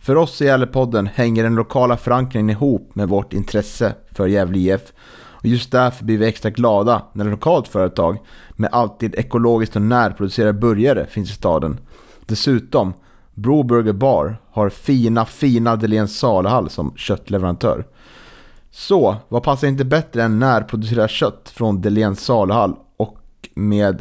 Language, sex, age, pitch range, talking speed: Swedish, male, 30-49, 105-125 Hz, 140 wpm